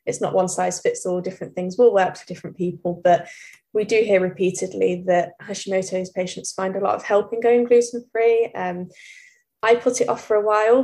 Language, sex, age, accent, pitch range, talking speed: English, female, 10-29, British, 185-230 Hz, 210 wpm